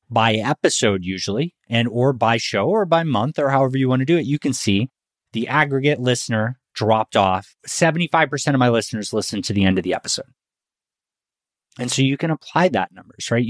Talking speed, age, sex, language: 195 wpm, 30-49, male, English